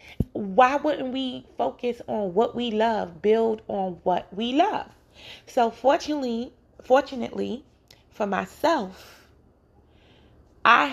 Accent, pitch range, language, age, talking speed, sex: American, 195-245 Hz, English, 20-39, 105 wpm, female